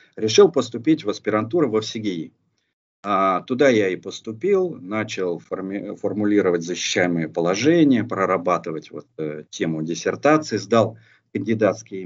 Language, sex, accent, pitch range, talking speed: Russian, male, native, 95-130 Hz, 100 wpm